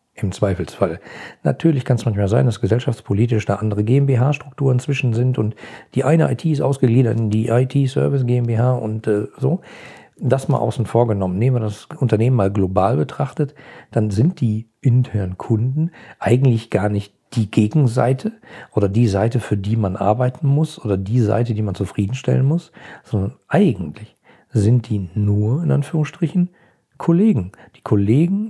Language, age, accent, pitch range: German, 50-69, German, 105-135 Hz